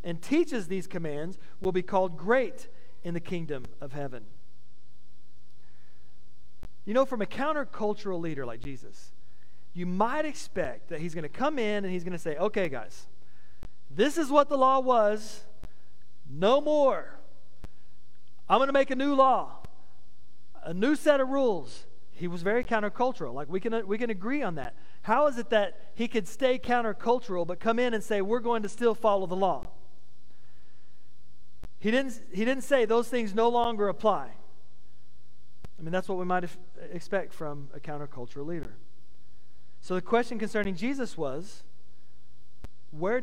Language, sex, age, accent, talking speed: English, male, 40-59, American, 165 wpm